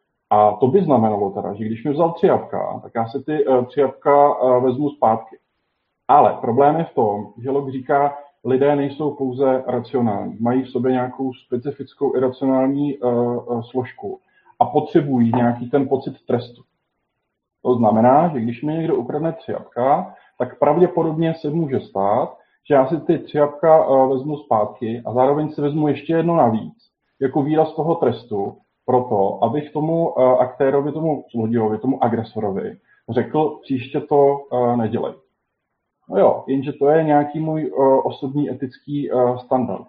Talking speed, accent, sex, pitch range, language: 150 wpm, native, male, 125-150 Hz, Czech